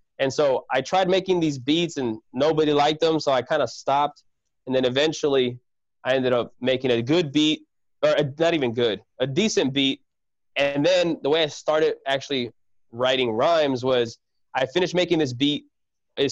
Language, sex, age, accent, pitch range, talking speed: English, male, 20-39, American, 125-165 Hz, 185 wpm